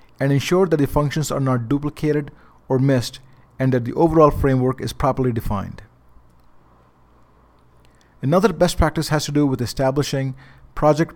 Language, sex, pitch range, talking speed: English, male, 115-145 Hz, 145 wpm